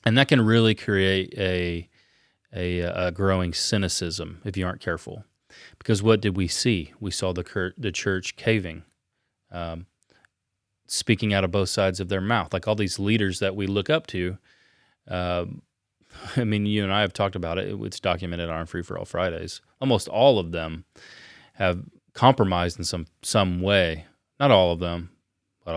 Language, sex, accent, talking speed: English, male, American, 175 wpm